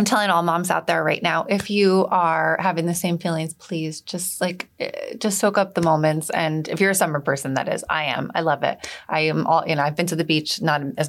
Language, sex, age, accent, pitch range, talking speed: English, female, 30-49, American, 155-190 Hz, 260 wpm